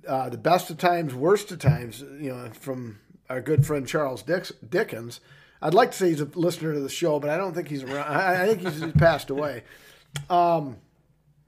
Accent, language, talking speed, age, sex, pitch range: American, English, 210 wpm, 40-59, male, 145-180 Hz